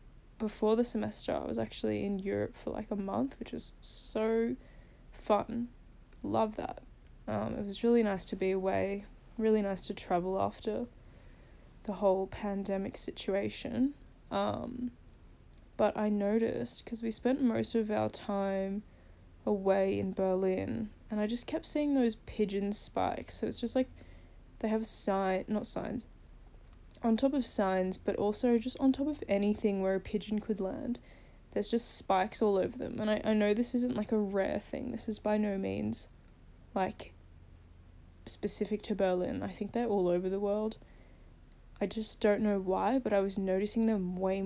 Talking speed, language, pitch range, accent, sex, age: 170 wpm, English, 190-225 Hz, Australian, female, 10-29